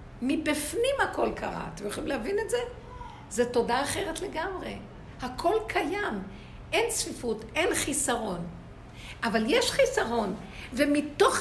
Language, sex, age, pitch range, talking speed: Hebrew, female, 60-79, 205-315 Hz, 115 wpm